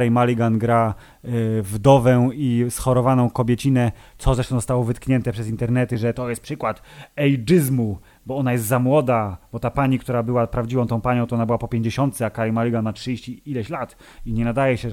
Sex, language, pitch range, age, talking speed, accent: male, Polish, 120-145 Hz, 30-49, 185 wpm, native